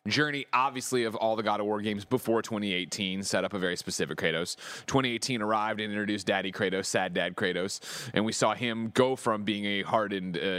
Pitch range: 100-125 Hz